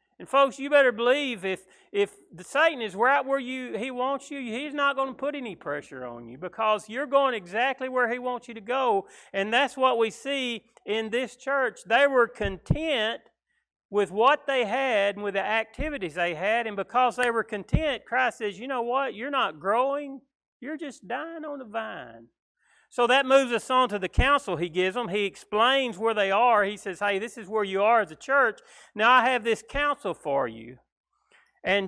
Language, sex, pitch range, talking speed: English, male, 185-265 Hz, 205 wpm